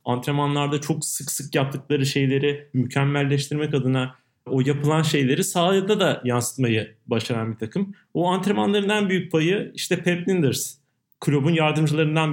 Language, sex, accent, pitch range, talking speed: Turkish, male, native, 130-165 Hz, 130 wpm